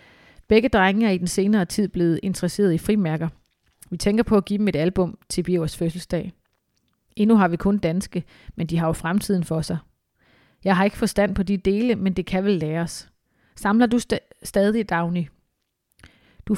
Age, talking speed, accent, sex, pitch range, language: 30-49, 190 wpm, native, female, 175-205 Hz, Danish